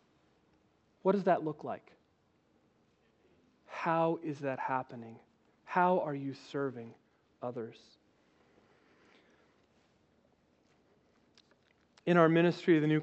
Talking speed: 90 wpm